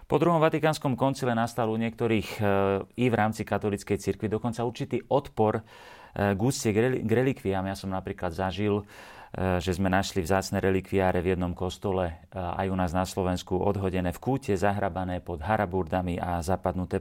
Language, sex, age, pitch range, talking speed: Slovak, male, 40-59, 90-105 Hz, 165 wpm